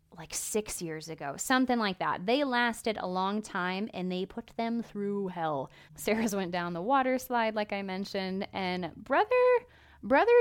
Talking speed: 175 wpm